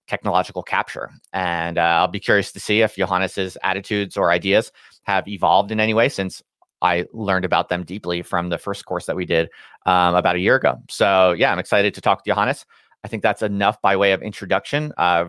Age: 30-49